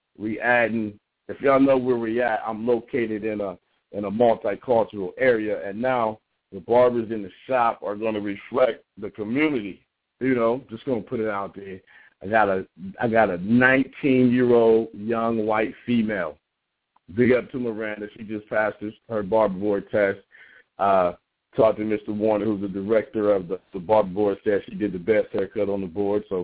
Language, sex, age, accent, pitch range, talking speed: English, male, 50-69, American, 100-120 Hz, 185 wpm